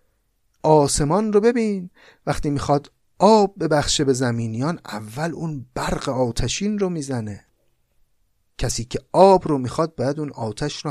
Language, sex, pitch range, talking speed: Persian, male, 120-170 Hz, 130 wpm